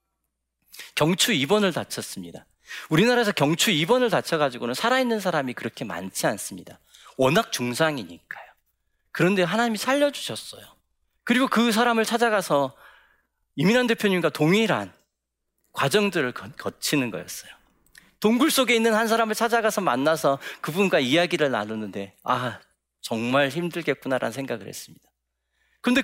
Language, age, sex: Korean, 40-59, male